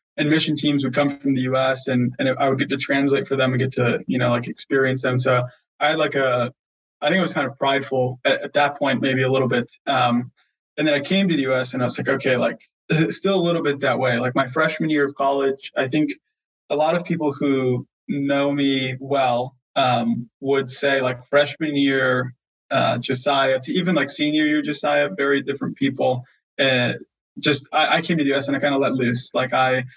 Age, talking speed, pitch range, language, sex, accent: 20-39, 230 wpm, 130-145 Hz, English, male, American